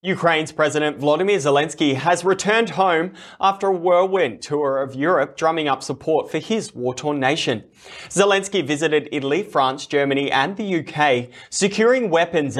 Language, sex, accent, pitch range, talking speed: English, male, Australian, 135-170 Hz, 145 wpm